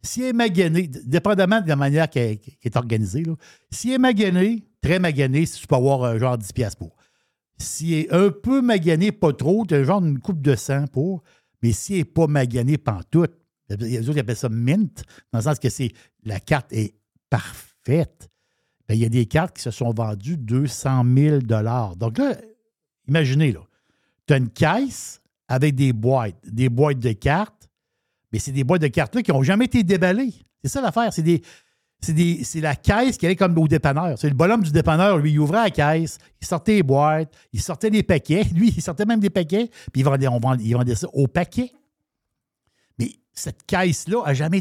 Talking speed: 210 wpm